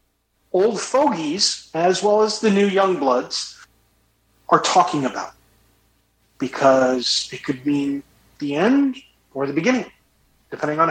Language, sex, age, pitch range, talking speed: English, male, 40-59, 115-155 Hz, 125 wpm